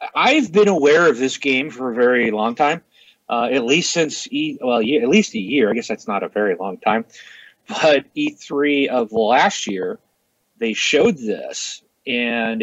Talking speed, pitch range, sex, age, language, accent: 185 wpm, 130-185 Hz, male, 40-59, English, American